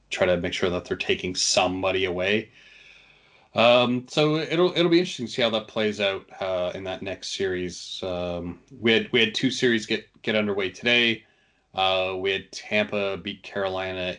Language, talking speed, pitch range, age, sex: English, 180 wpm, 95-140 Hz, 30-49, male